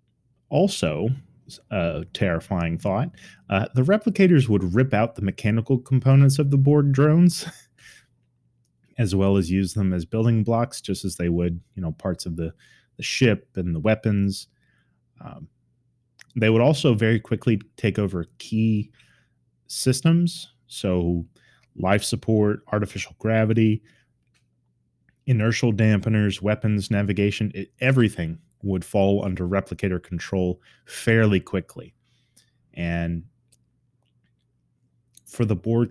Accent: American